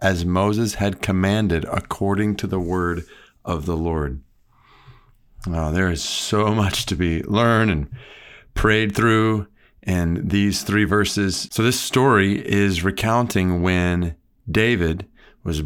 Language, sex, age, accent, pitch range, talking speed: English, male, 40-59, American, 90-110 Hz, 125 wpm